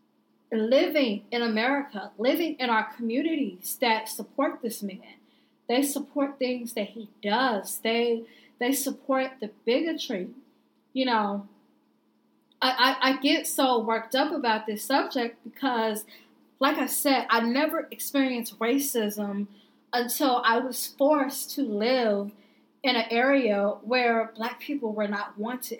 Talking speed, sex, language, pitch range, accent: 135 wpm, female, English, 210-255 Hz, American